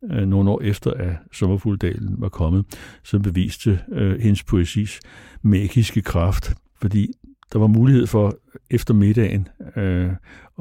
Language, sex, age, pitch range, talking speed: Danish, male, 60-79, 90-105 Hz, 125 wpm